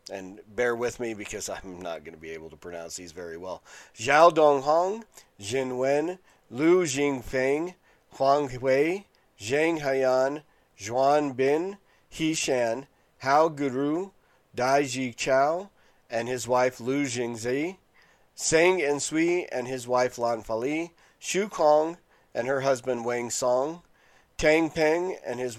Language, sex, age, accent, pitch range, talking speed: English, male, 40-59, American, 120-150 Hz, 145 wpm